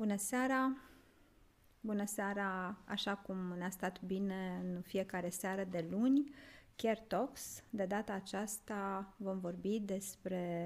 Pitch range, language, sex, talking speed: 175-215 Hz, Romanian, female, 125 wpm